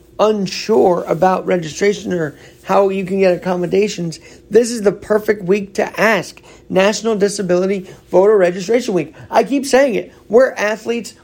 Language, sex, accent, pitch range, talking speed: English, male, American, 185-235 Hz, 145 wpm